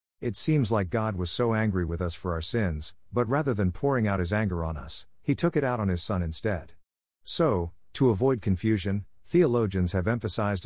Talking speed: 205 wpm